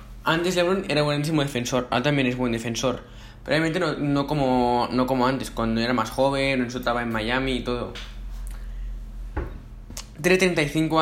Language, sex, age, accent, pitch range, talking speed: Spanish, male, 10-29, Spanish, 115-150 Hz, 145 wpm